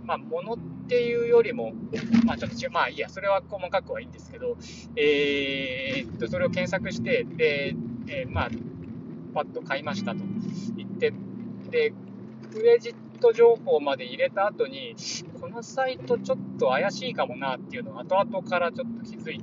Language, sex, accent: Japanese, male, native